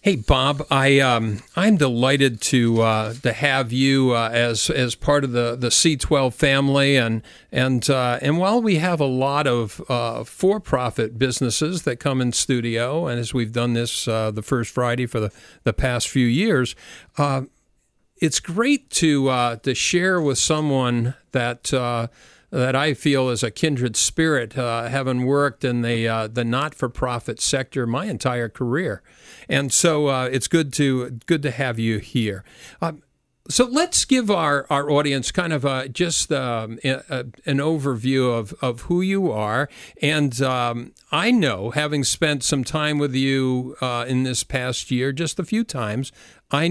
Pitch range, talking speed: 120-150 Hz, 175 wpm